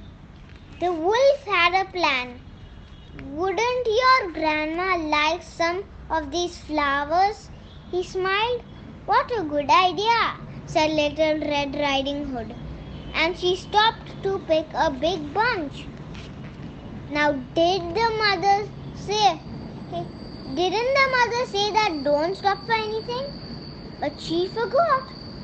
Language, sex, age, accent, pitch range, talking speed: Gujarati, male, 20-39, native, 295-380 Hz, 115 wpm